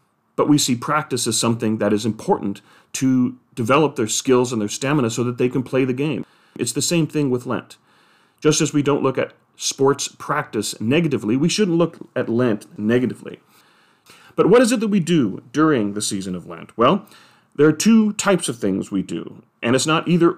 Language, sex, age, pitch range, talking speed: English, male, 40-59, 110-155 Hz, 205 wpm